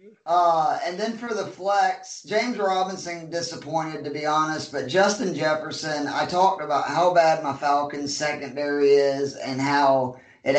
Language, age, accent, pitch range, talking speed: English, 30-49, American, 140-170 Hz, 155 wpm